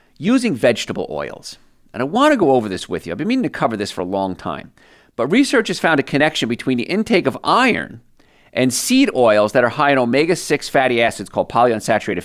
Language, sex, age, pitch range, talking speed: English, male, 50-69, 115-160 Hz, 220 wpm